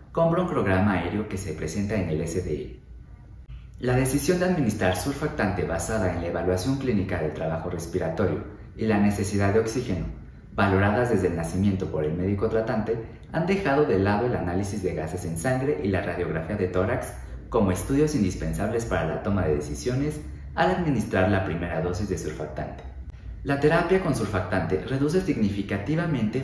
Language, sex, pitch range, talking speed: Spanish, male, 90-120 Hz, 165 wpm